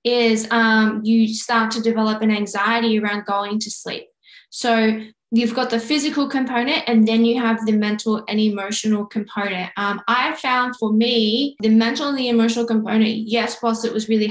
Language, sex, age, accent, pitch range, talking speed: English, female, 10-29, Australian, 215-240 Hz, 180 wpm